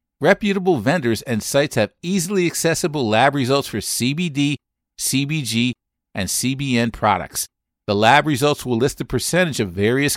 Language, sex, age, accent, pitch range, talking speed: English, male, 50-69, American, 110-155 Hz, 140 wpm